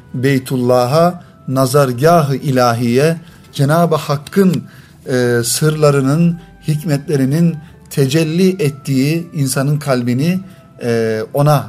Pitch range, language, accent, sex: 130-165 Hz, Turkish, native, male